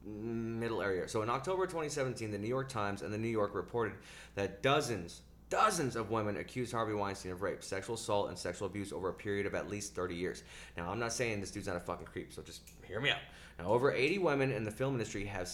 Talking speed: 240 wpm